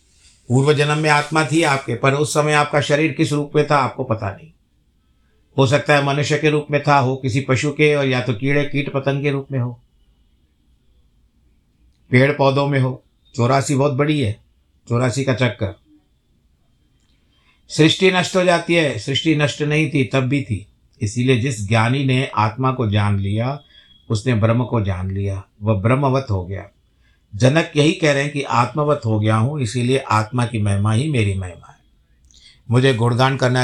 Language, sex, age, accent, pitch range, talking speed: Hindi, male, 50-69, native, 100-140 Hz, 180 wpm